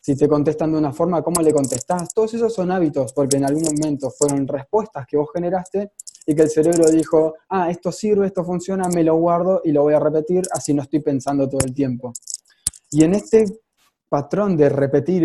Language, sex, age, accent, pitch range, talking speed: Spanish, male, 20-39, Argentinian, 145-185 Hz, 210 wpm